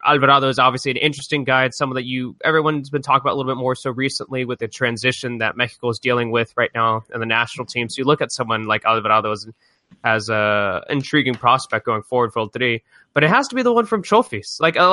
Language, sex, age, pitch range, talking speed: English, male, 20-39, 120-155 Hz, 240 wpm